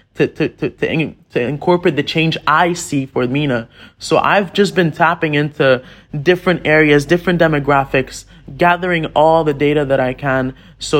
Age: 20-39